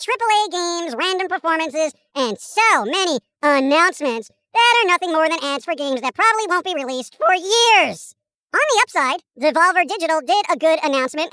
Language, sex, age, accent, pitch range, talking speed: English, male, 40-59, American, 300-395 Hz, 170 wpm